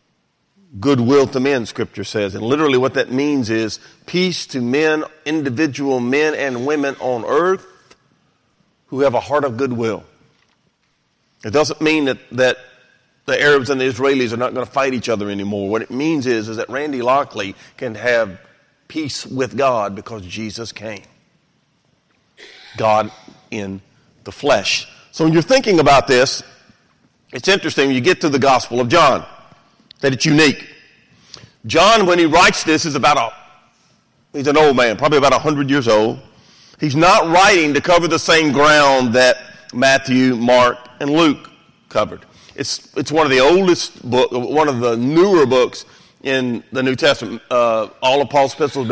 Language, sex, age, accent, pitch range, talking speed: English, male, 40-59, American, 120-155 Hz, 170 wpm